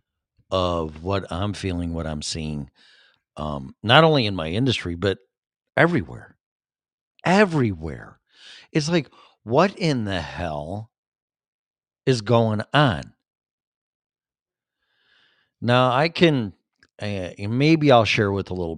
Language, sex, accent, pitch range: English, male, American, 90-130 Hz